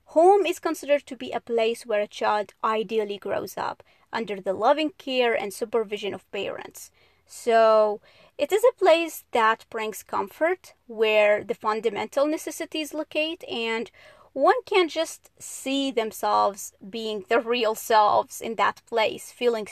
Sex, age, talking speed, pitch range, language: female, 30-49, 145 wpm, 215-275 Hz, English